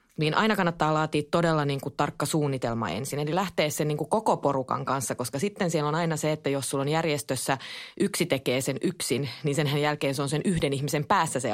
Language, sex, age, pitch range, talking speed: Finnish, female, 20-39, 135-160 Hz, 220 wpm